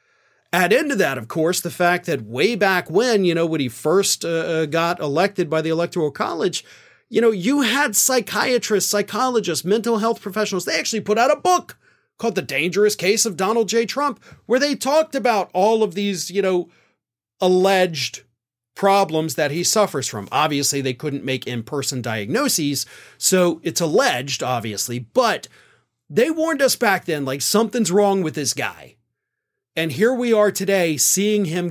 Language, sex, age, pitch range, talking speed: English, male, 30-49, 150-210 Hz, 170 wpm